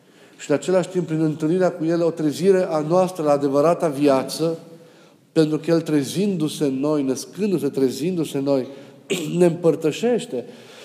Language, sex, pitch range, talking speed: Romanian, male, 140-165 Hz, 150 wpm